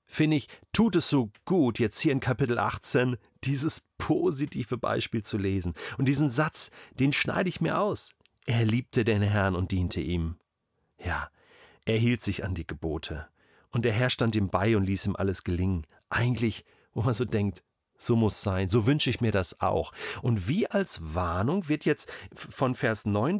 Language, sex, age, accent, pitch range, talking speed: German, male, 40-59, German, 110-150 Hz, 185 wpm